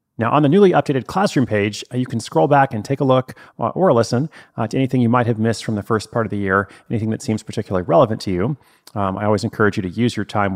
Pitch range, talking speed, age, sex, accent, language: 105-130 Hz, 280 wpm, 30-49, male, American, English